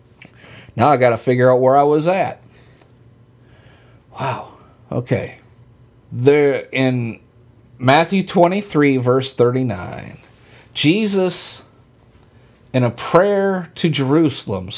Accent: American